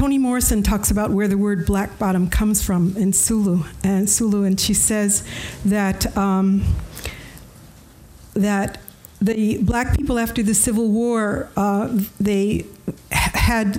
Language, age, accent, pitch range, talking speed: English, 60-79, American, 185-220 Hz, 140 wpm